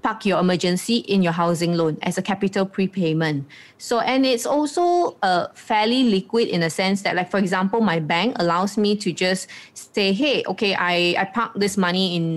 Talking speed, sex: 195 wpm, female